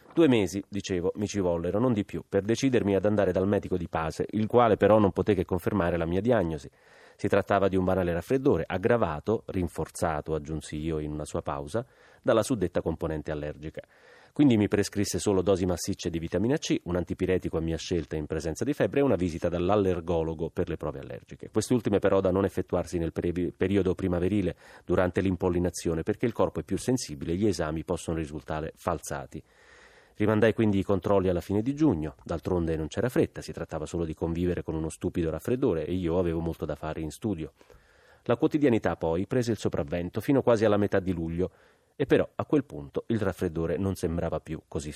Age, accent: 30-49, native